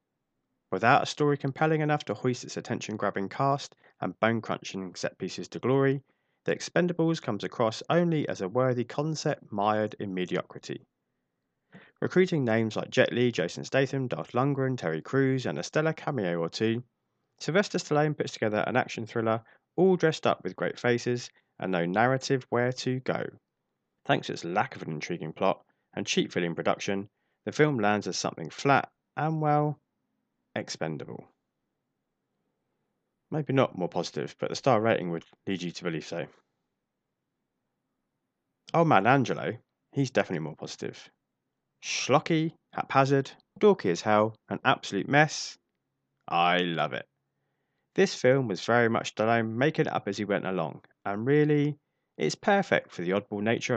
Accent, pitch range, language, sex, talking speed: British, 105-145 Hz, English, male, 155 wpm